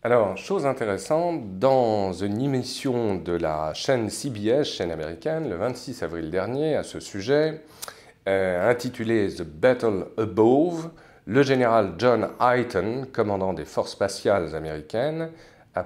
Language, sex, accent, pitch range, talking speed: French, male, French, 95-140 Hz, 130 wpm